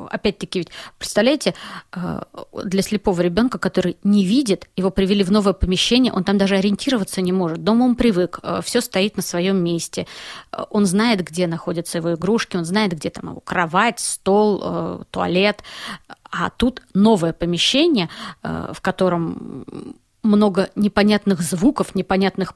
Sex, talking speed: female, 140 wpm